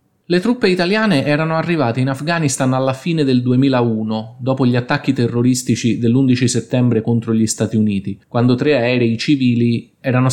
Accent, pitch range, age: native, 115-140 Hz, 20-39